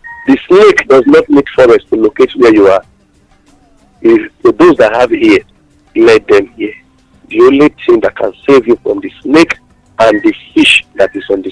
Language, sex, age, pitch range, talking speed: English, male, 50-69, 325-410 Hz, 200 wpm